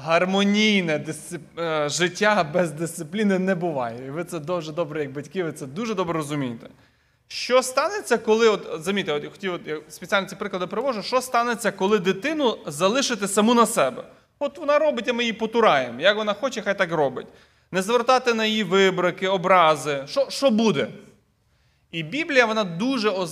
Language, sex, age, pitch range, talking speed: Ukrainian, male, 30-49, 170-225 Hz, 160 wpm